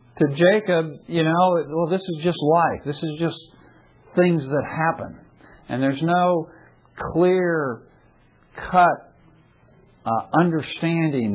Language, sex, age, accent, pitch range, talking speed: English, male, 60-79, American, 140-180 Hz, 115 wpm